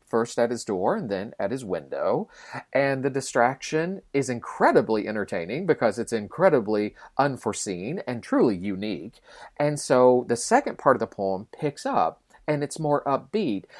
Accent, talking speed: American, 155 wpm